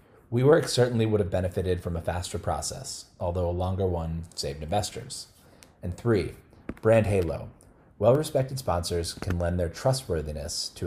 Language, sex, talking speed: English, male, 145 wpm